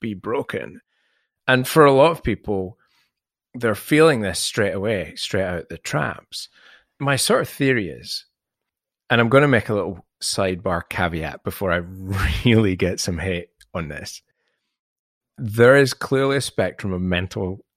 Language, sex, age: English, male, 30-49